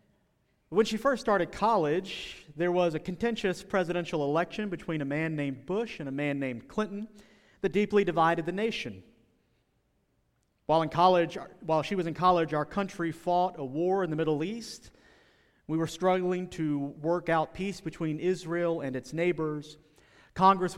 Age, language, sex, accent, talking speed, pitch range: 40-59, English, male, American, 160 wpm, 145-180 Hz